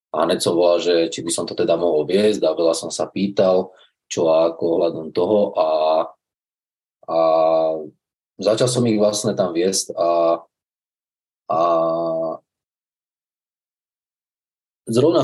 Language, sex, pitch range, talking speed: Slovak, male, 80-100 Hz, 120 wpm